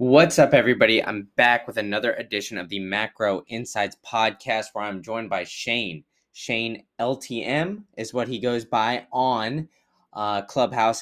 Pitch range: 110-135 Hz